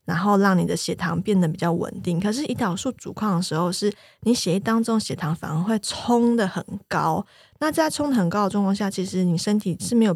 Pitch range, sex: 170-215 Hz, female